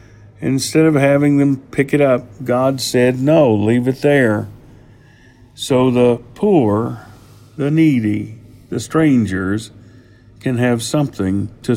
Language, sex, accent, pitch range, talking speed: English, male, American, 110-135 Hz, 120 wpm